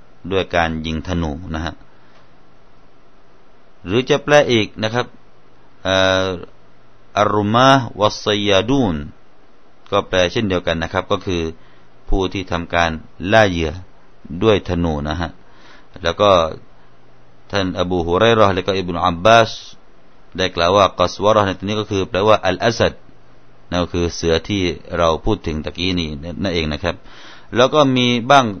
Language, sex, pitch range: Thai, male, 90-115 Hz